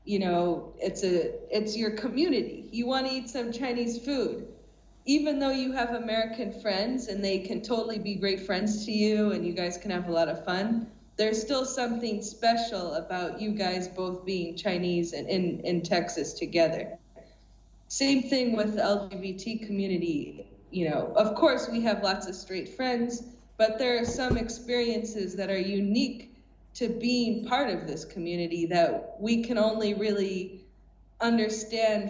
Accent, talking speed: American, 170 wpm